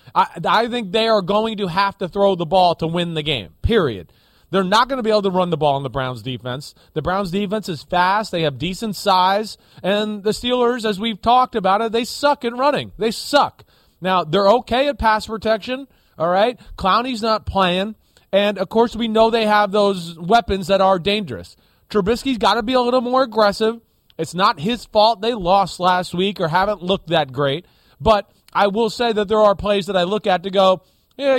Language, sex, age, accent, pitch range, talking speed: English, male, 30-49, American, 180-225 Hz, 215 wpm